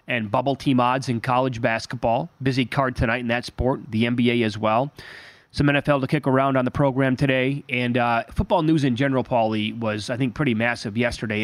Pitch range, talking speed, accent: 120-155 Hz, 205 wpm, American